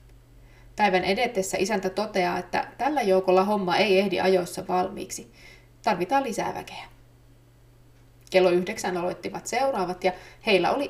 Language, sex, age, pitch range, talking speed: Finnish, female, 30-49, 125-200 Hz, 120 wpm